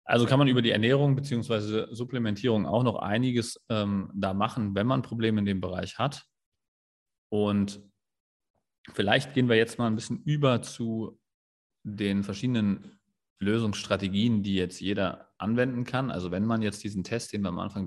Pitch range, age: 100-125 Hz, 30-49